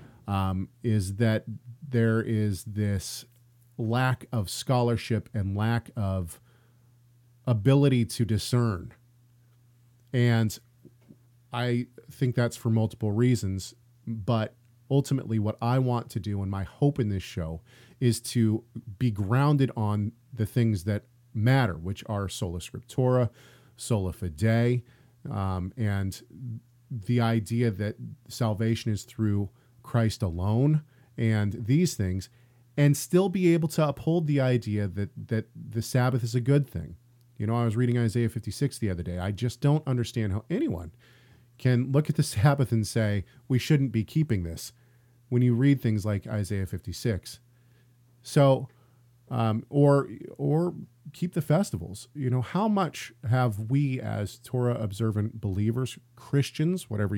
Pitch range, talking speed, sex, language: 110-125 Hz, 140 wpm, male, English